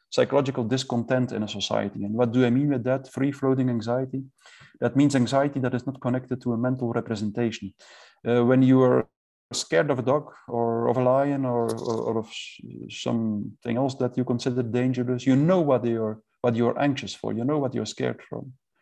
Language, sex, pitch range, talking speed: English, male, 120-145 Hz, 195 wpm